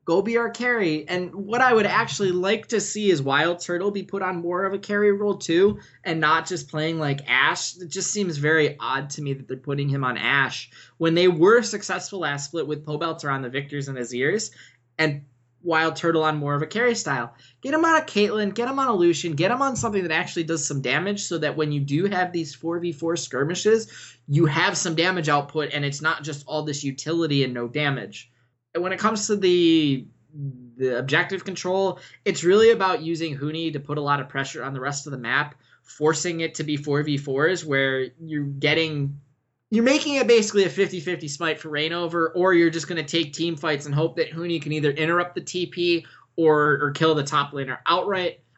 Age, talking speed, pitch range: 20-39, 215 wpm, 140-180 Hz